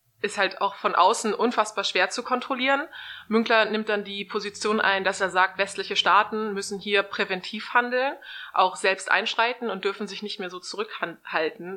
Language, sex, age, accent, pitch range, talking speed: German, female, 20-39, German, 185-220 Hz, 175 wpm